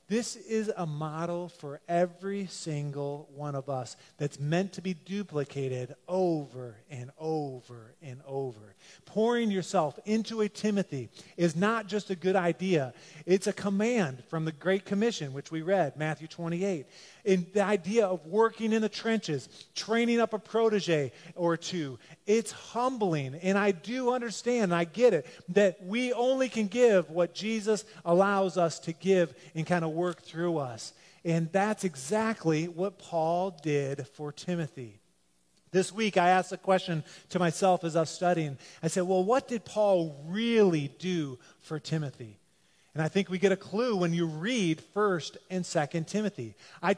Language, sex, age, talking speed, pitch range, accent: English, male, 30-49, 165 wpm, 160-205 Hz, American